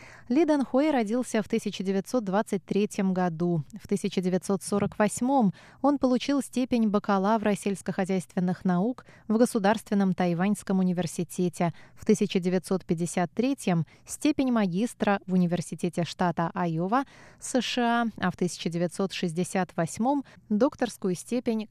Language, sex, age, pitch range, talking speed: Russian, female, 20-39, 180-230 Hz, 90 wpm